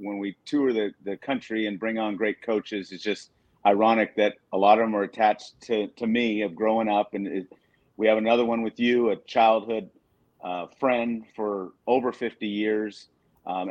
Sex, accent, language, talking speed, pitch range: male, American, English, 195 wpm, 105-125 Hz